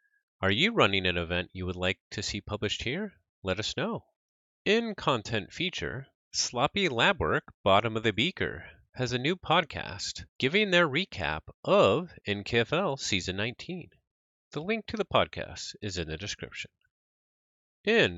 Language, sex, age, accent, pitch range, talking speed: English, male, 30-49, American, 90-150 Hz, 150 wpm